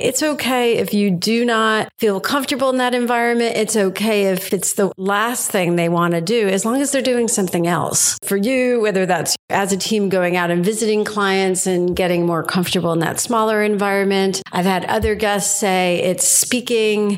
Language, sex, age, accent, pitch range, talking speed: English, female, 50-69, American, 175-210 Hz, 195 wpm